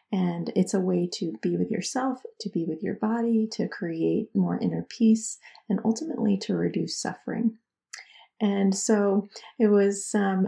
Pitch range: 180-225 Hz